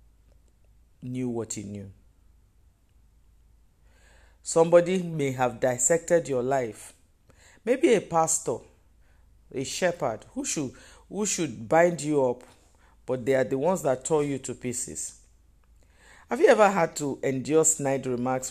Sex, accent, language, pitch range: male, Nigerian, English, 105-150 Hz